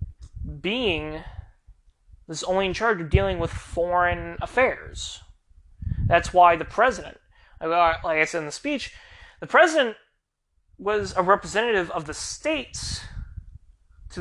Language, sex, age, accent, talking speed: English, male, 20-39, American, 120 wpm